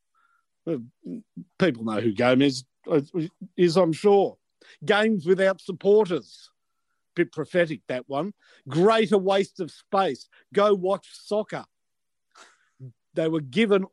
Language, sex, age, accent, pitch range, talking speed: English, male, 50-69, Australian, 155-210 Hz, 110 wpm